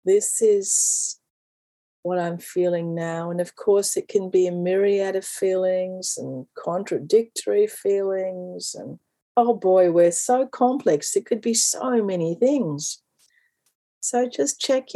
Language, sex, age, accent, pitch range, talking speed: English, female, 40-59, Australian, 180-245 Hz, 135 wpm